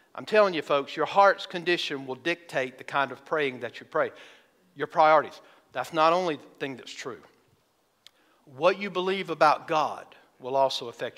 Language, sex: English, male